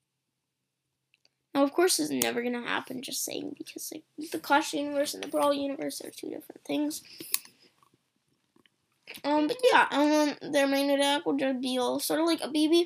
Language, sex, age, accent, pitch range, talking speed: English, female, 10-29, American, 255-315 Hz, 175 wpm